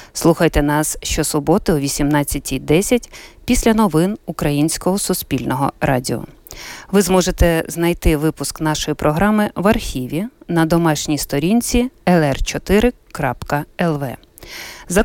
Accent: native